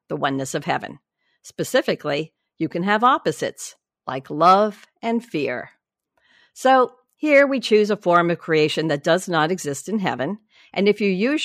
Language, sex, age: English, female, 50-69